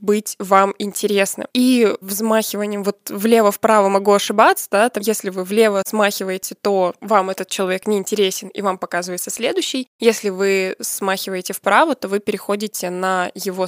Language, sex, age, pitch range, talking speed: Russian, female, 20-39, 195-230 Hz, 145 wpm